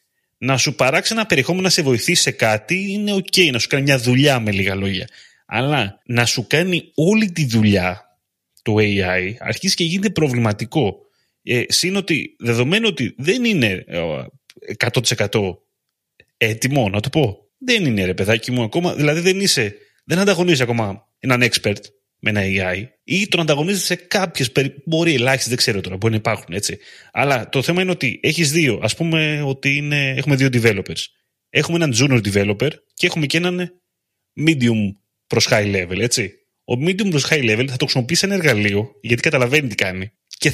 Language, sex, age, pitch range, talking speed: Greek, male, 30-49, 110-170 Hz, 175 wpm